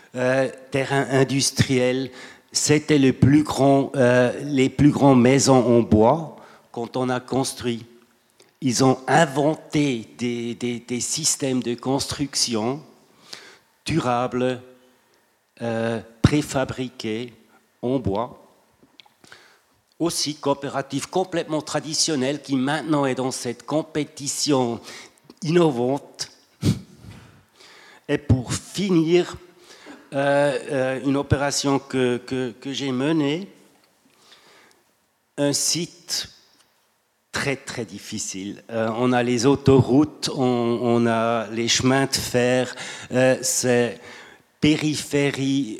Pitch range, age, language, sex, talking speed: 120-145 Hz, 60-79, French, male, 95 wpm